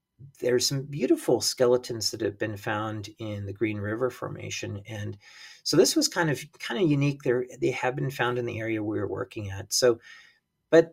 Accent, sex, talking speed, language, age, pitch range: American, male, 200 wpm, English, 40-59, 105-130 Hz